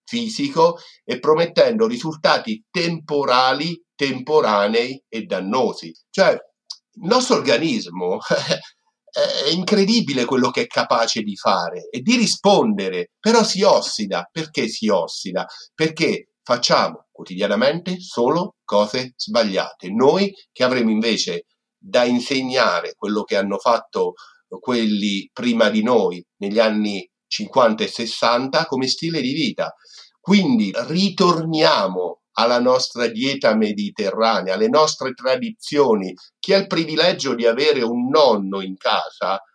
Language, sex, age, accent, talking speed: Italian, male, 50-69, native, 115 wpm